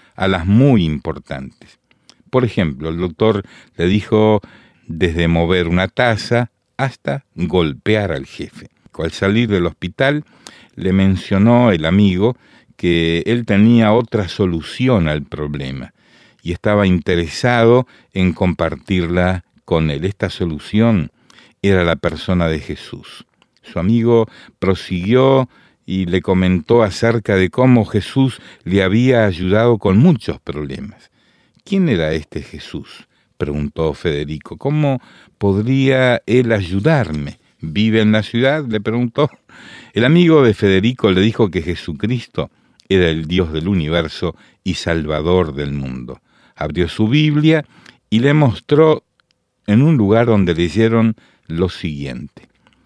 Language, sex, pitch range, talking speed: English, male, 85-115 Hz, 125 wpm